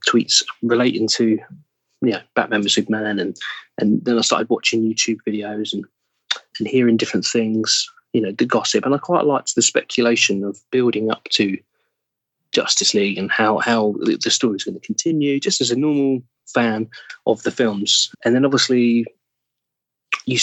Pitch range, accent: 110-135 Hz, British